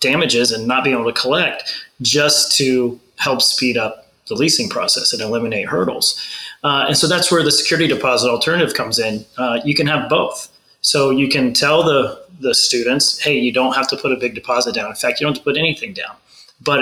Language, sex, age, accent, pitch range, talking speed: English, male, 30-49, American, 125-145 Hz, 220 wpm